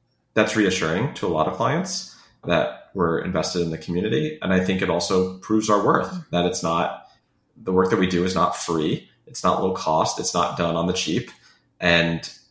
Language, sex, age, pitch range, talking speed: English, male, 30-49, 80-95 Hz, 205 wpm